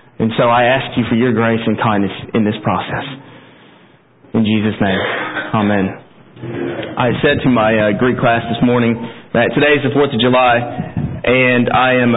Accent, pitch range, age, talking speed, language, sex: American, 120-145 Hz, 40-59, 175 wpm, English, male